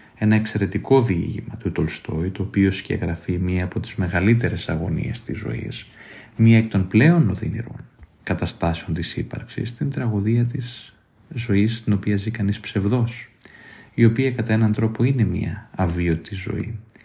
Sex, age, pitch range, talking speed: male, 30-49, 95-115 Hz, 145 wpm